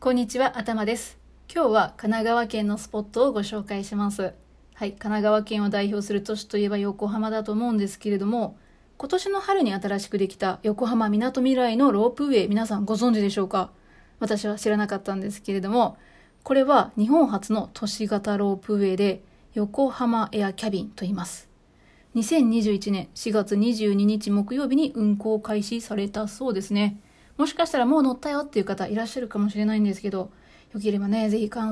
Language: Japanese